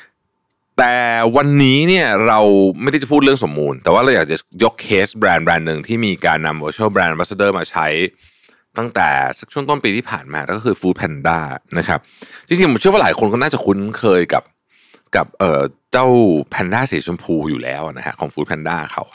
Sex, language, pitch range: male, Thai, 85-125 Hz